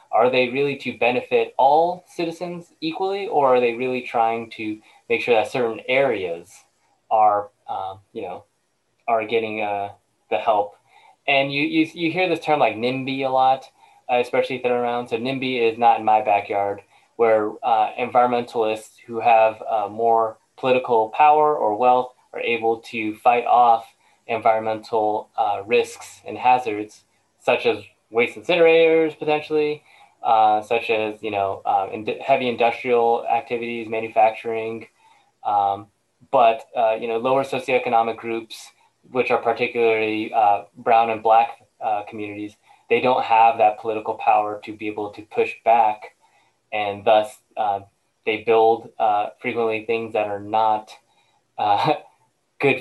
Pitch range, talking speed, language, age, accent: 110-130 Hz, 150 wpm, English, 20-39, American